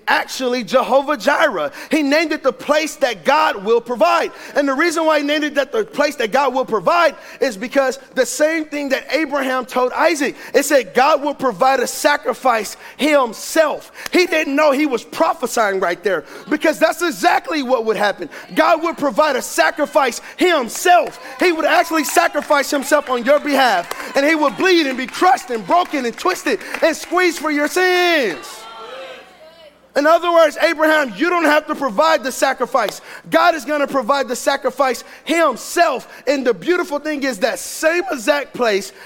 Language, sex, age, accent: English, male, 40-59, American